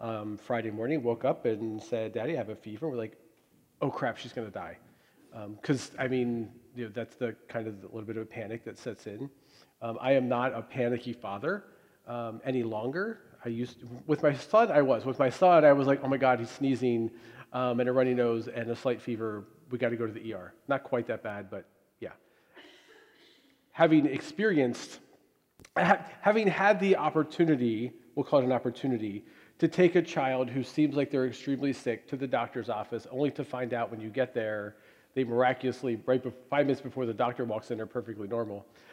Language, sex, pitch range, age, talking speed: English, male, 115-145 Hz, 40-59, 205 wpm